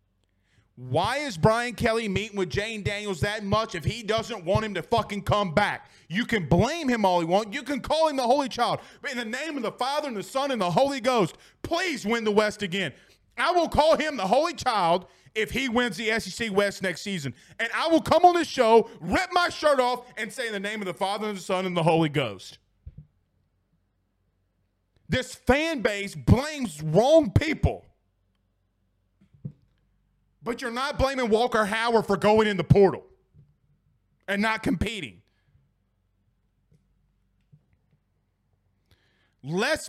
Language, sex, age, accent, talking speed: English, male, 30-49, American, 170 wpm